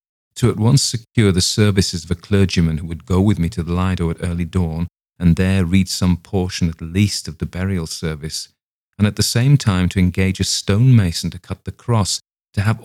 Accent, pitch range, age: British, 85-100 Hz, 40-59